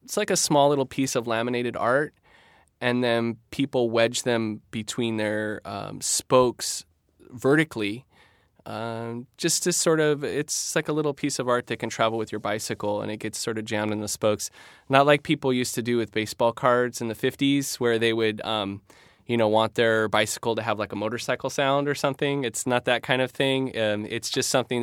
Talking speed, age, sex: 205 wpm, 20-39, male